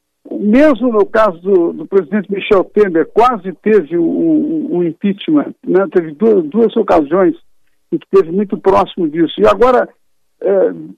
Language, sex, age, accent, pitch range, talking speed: Portuguese, male, 60-79, Brazilian, 195-260 Hz, 155 wpm